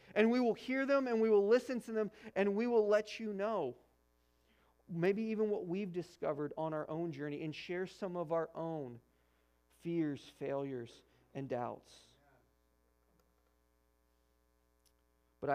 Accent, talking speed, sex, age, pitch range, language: American, 145 wpm, male, 40-59, 115-165 Hz, English